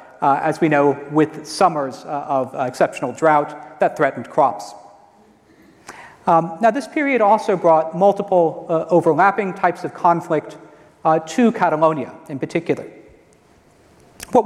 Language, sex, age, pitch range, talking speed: French, male, 40-59, 155-195 Hz, 135 wpm